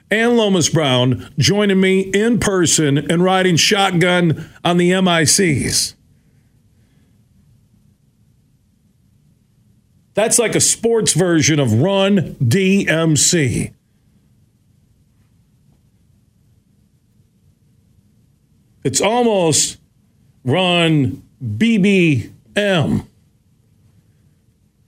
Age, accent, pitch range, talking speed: 50-69, American, 125-170 Hz, 60 wpm